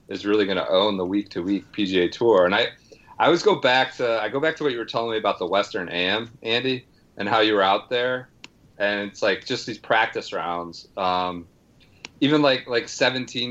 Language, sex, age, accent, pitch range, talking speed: English, male, 30-49, American, 100-125 Hz, 220 wpm